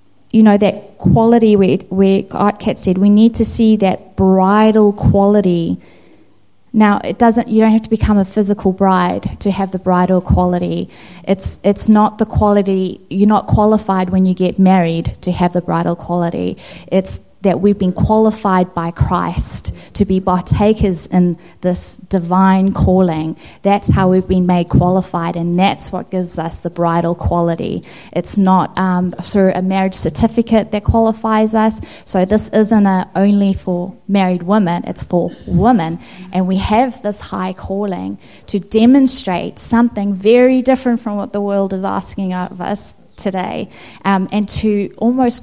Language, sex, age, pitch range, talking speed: English, female, 20-39, 180-210 Hz, 160 wpm